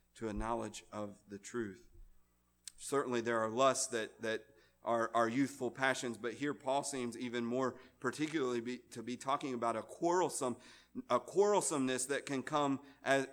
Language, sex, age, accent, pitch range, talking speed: English, male, 40-59, American, 115-140 Hz, 160 wpm